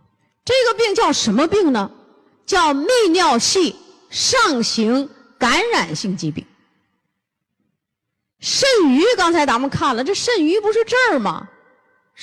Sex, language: female, Chinese